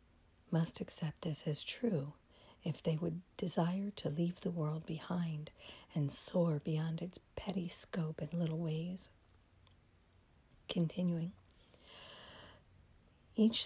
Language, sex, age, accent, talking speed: English, female, 60-79, American, 110 wpm